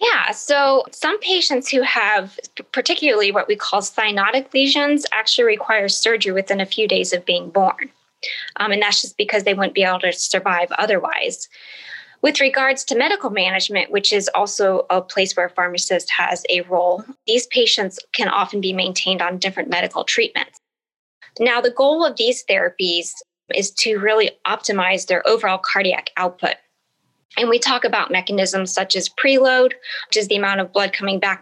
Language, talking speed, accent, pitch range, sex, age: English, 170 wpm, American, 190-265 Hz, female, 20-39